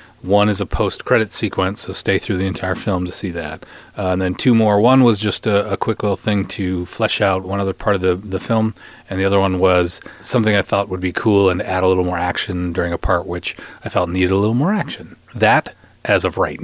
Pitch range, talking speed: 90-115 Hz, 255 wpm